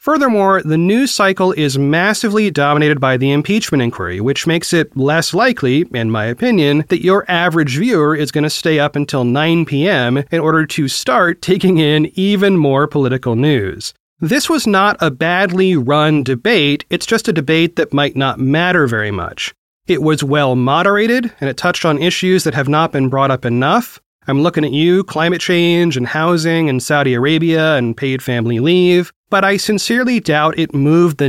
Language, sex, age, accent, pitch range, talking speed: English, male, 30-49, American, 145-185 Hz, 180 wpm